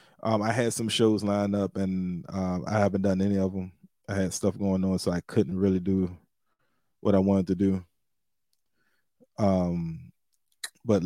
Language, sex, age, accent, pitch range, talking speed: English, male, 20-39, American, 95-120 Hz, 175 wpm